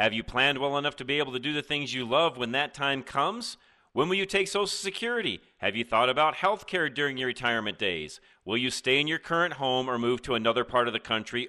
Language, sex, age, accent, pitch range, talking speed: English, male, 40-59, American, 130-195 Hz, 255 wpm